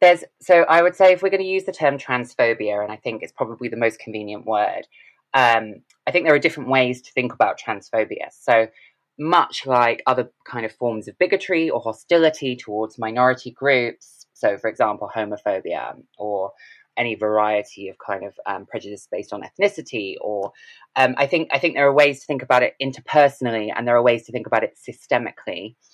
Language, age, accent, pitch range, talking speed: English, 20-39, British, 115-155 Hz, 195 wpm